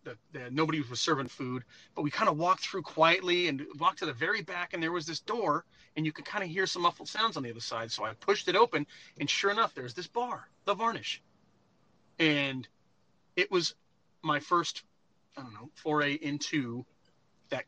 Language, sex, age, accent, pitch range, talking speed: English, male, 30-49, American, 135-170 Hz, 205 wpm